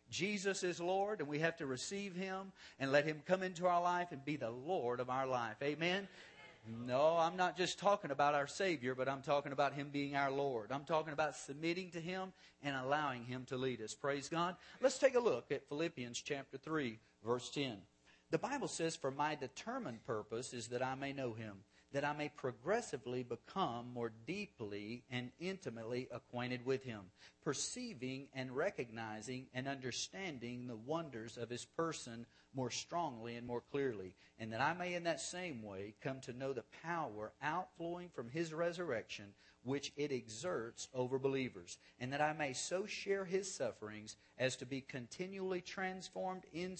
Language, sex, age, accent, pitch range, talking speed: English, male, 50-69, American, 125-170 Hz, 180 wpm